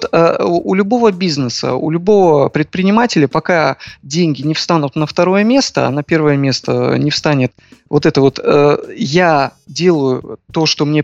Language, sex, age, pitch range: Russian, male, 20-39, 145-185 Hz